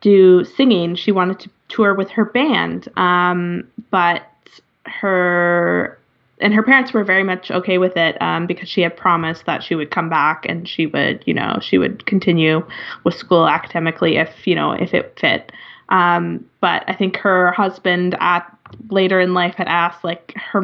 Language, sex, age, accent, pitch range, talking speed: English, female, 20-39, American, 180-215 Hz, 180 wpm